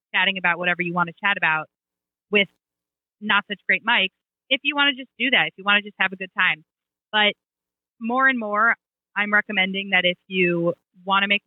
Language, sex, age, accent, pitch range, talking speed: English, female, 30-49, American, 170-220 Hz, 215 wpm